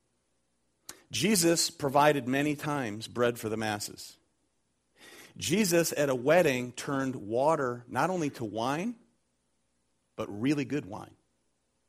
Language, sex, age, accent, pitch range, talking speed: English, male, 40-59, American, 110-145 Hz, 110 wpm